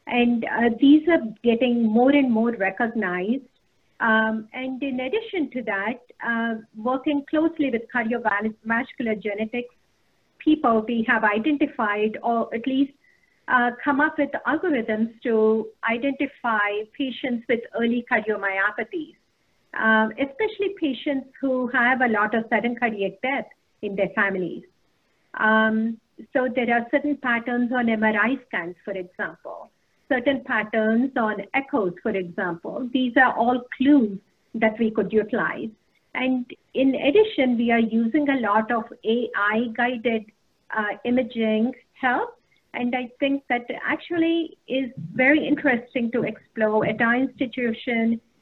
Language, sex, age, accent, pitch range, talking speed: English, female, 50-69, Indian, 220-265 Hz, 130 wpm